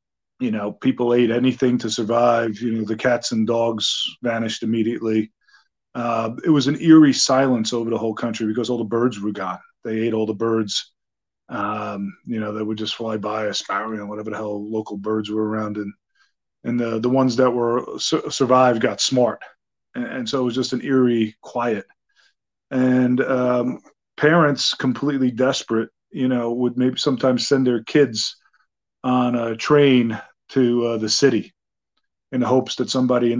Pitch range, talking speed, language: 110-130 Hz, 175 wpm, English